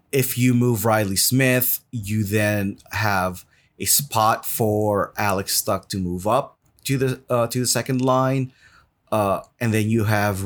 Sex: male